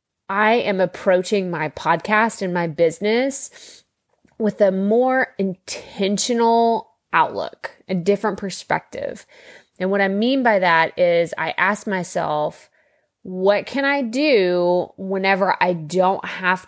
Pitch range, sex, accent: 175-210 Hz, female, American